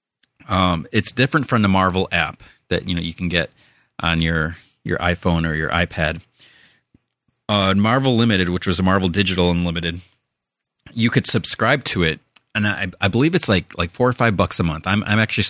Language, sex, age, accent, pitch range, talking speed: English, male, 30-49, American, 85-110 Hz, 195 wpm